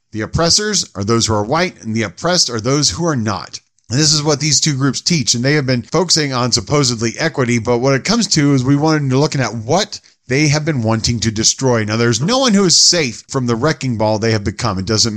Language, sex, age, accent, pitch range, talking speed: English, male, 40-59, American, 115-155 Hz, 255 wpm